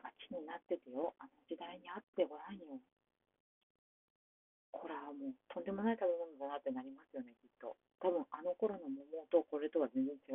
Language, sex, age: Japanese, female, 40-59